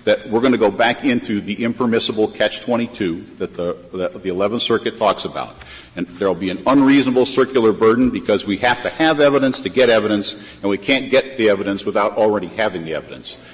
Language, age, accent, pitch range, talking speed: English, 50-69, American, 95-120 Hz, 190 wpm